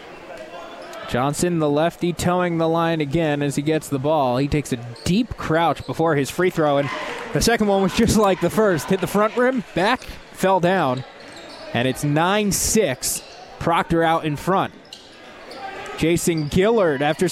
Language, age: English, 20-39